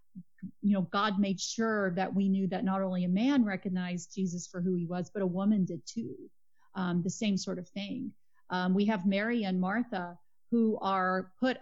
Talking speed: 200 wpm